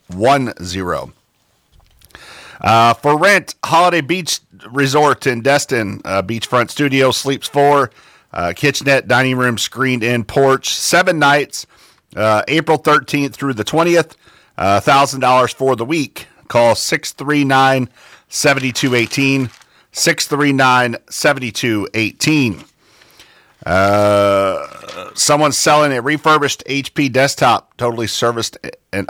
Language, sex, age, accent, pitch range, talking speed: English, male, 40-59, American, 115-145 Hz, 95 wpm